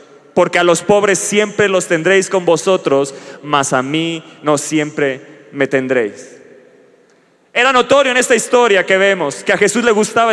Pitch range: 200-260 Hz